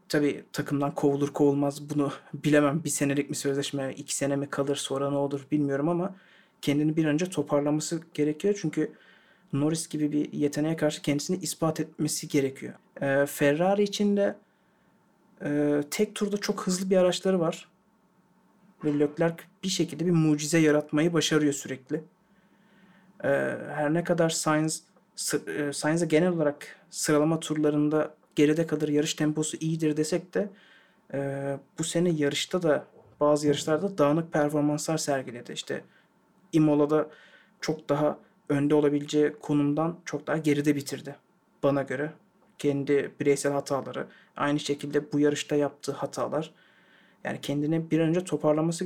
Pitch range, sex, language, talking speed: 145-170 Hz, male, Turkish, 135 wpm